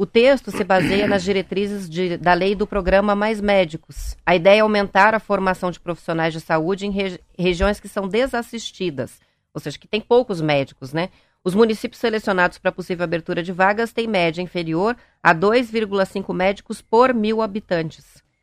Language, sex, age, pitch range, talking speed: Portuguese, female, 30-49, 175-220 Hz, 165 wpm